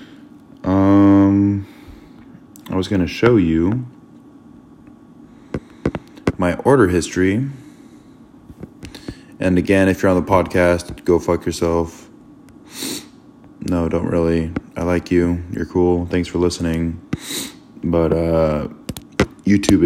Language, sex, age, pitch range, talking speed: English, male, 20-39, 85-115 Hz, 105 wpm